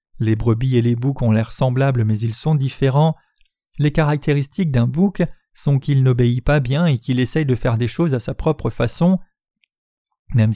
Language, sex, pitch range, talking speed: French, male, 125-160 Hz, 190 wpm